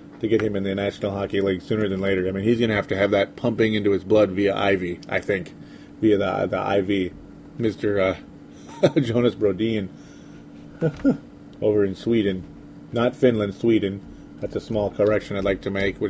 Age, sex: 30-49, male